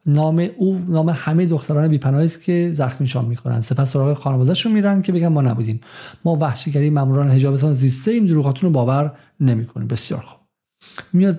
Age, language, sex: 50-69, Persian, male